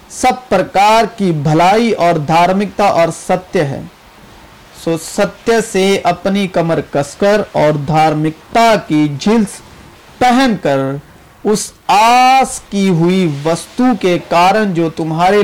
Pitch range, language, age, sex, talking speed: 160-220 Hz, Urdu, 40-59, male, 55 wpm